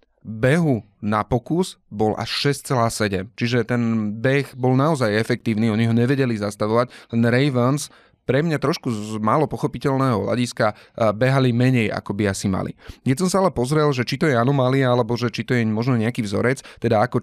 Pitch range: 110-135 Hz